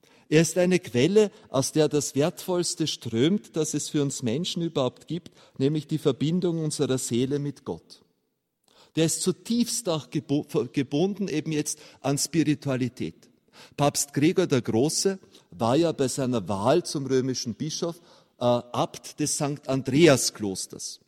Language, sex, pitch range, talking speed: German, male, 130-160 Hz, 140 wpm